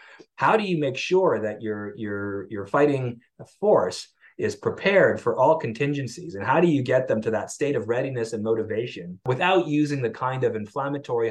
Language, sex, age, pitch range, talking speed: English, male, 30-49, 110-145 Hz, 185 wpm